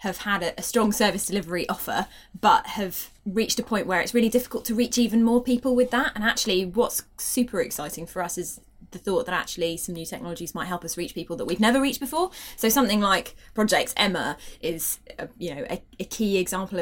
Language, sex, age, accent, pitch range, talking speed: English, female, 20-39, British, 170-225 Hz, 220 wpm